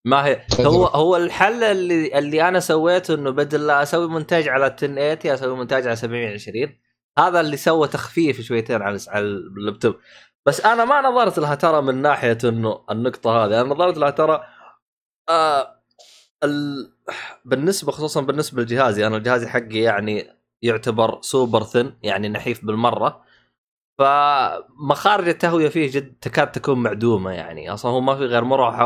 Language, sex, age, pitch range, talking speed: Arabic, male, 20-39, 115-145 Hz, 150 wpm